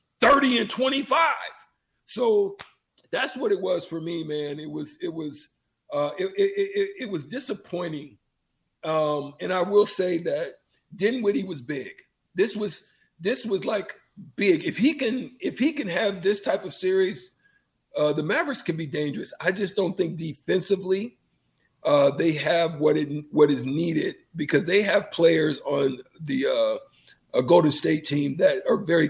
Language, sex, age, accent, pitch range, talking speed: English, male, 50-69, American, 150-205 Hz, 165 wpm